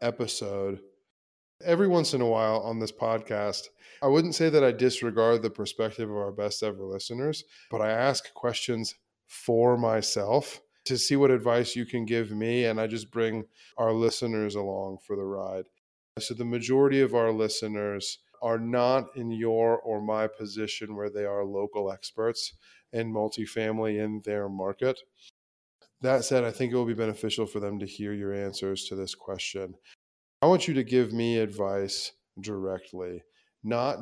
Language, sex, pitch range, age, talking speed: English, male, 100-120 Hz, 20-39, 170 wpm